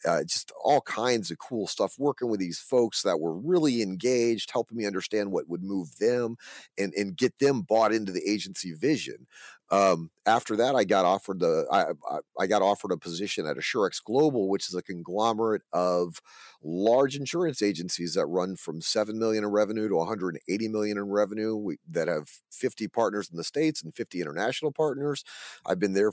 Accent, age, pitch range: American, 40-59, 95-120 Hz